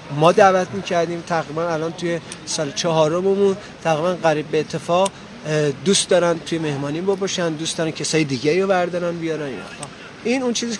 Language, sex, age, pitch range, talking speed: Persian, male, 30-49, 145-190 Hz, 160 wpm